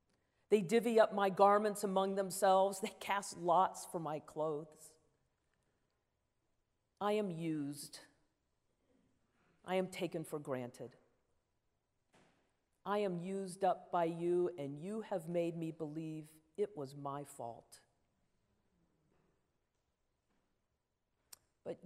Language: English